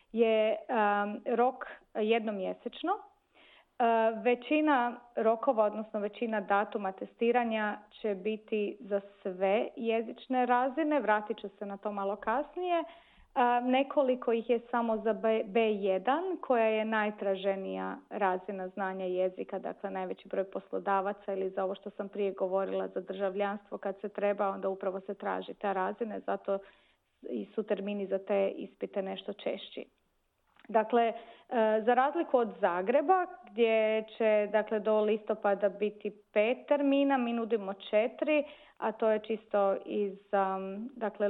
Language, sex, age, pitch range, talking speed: Croatian, female, 30-49, 200-240 Hz, 125 wpm